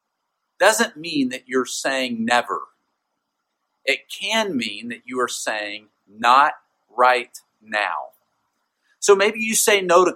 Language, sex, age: English, male, 40-59